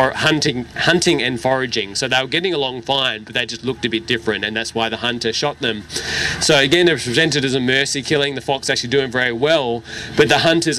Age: 20-39